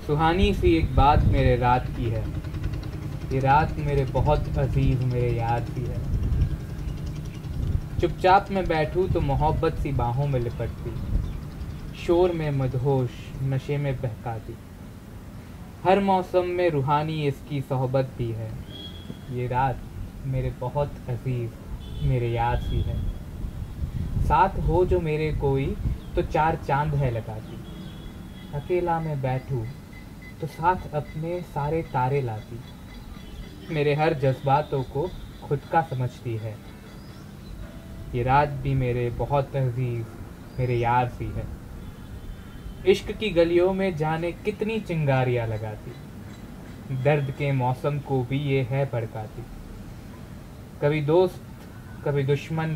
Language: Gujarati